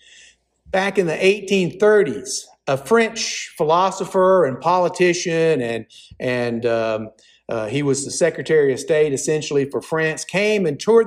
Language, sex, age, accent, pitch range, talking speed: English, male, 50-69, American, 140-230 Hz, 135 wpm